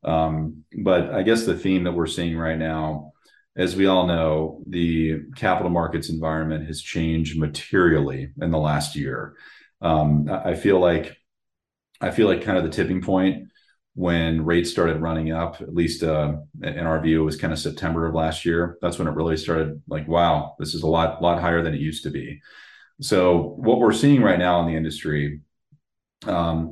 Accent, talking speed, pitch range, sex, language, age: American, 190 wpm, 80-85 Hz, male, English, 40-59